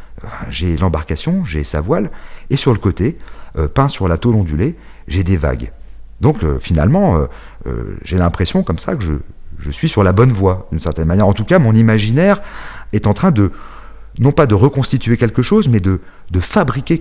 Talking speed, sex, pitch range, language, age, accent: 200 wpm, male, 85-120 Hz, French, 40-59, French